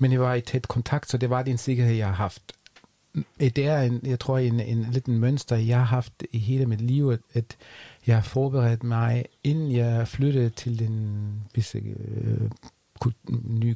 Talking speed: 175 wpm